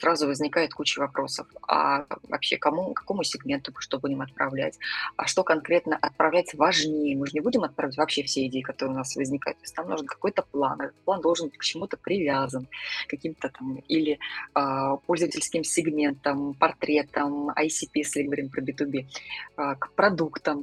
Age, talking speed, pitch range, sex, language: 20-39, 160 wpm, 145-175 Hz, female, Russian